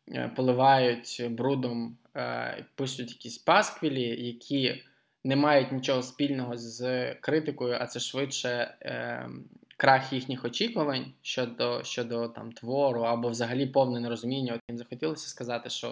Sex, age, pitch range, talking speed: male, 20-39, 120-140 Hz, 115 wpm